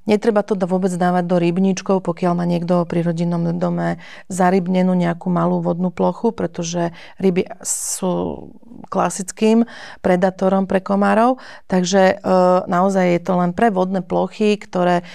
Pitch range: 175-195 Hz